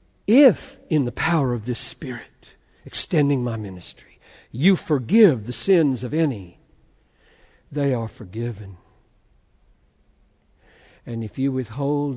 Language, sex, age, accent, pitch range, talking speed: Hindi, male, 60-79, American, 115-155 Hz, 115 wpm